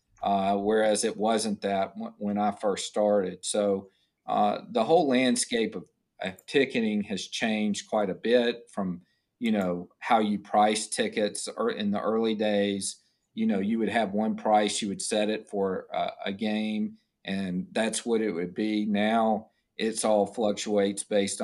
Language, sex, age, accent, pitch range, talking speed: English, male, 40-59, American, 100-110 Hz, 170 wpm